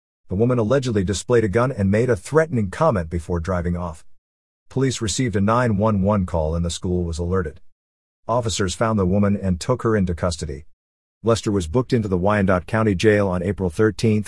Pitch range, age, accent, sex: 90-115 Hz, 50-69, American, male